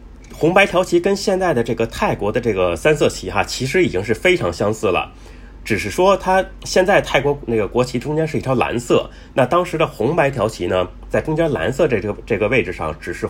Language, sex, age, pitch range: Chinese, male, 30-49, 110-175 Hz